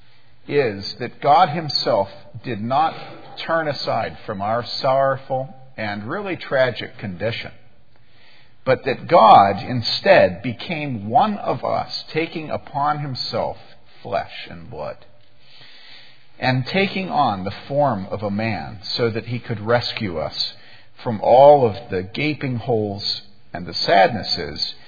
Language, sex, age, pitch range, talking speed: English, male, 50-69, 100-125 Hz, 125 wpm